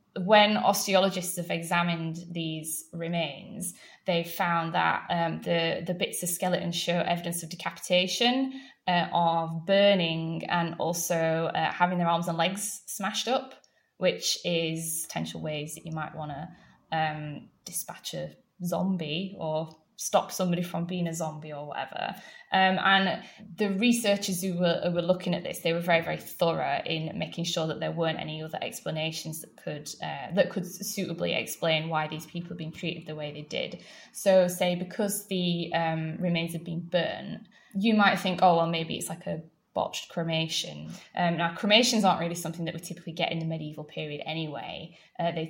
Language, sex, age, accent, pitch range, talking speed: English, female, 10-29, British, 165-195 Hz, 175 wpm